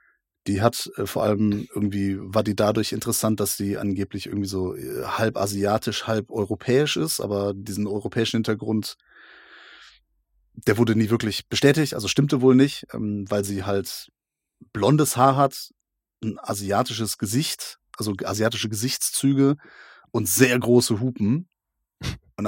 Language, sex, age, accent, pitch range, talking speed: German, male, 30-49, German, 100-120 Hz, 140 wpm